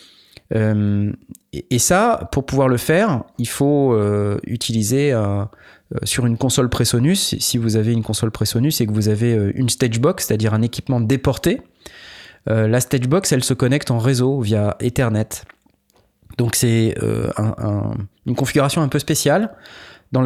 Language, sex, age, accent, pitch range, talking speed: French, male, 20-39, French, 110-135 Hz, 135 wpm